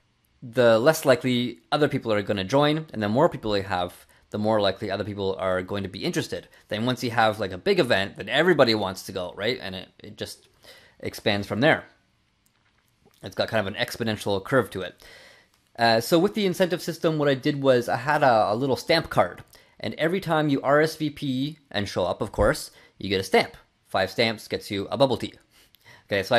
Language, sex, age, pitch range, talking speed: English, male, 30-49, 105-140 Hz, 215 wpm